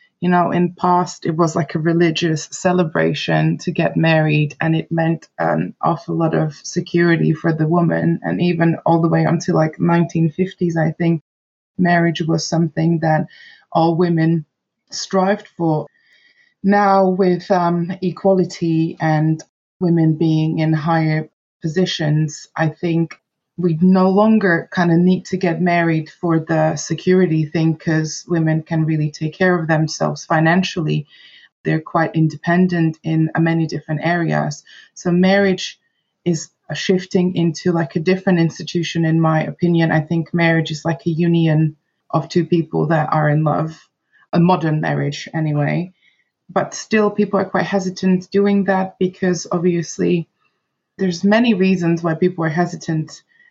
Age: 20-39